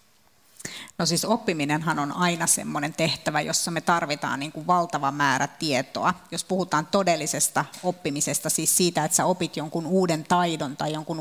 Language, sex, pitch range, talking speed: Finnish, female, 160-195 Hz, 155 wpm